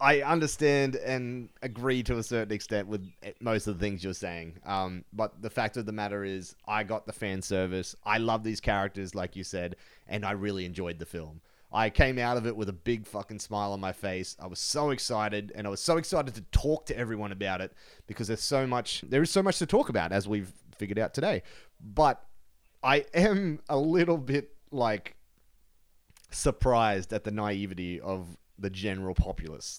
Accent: Australian